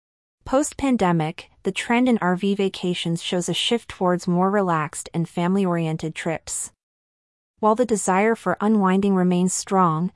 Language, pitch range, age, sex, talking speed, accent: English, 170-205 Hz, 30-49, female, 130 wpm, American